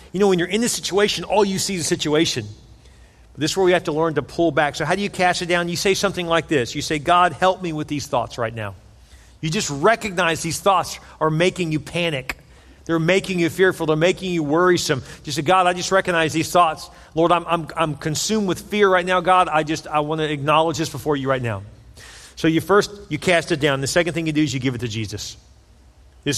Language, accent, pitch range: English, American, 140-185 Hz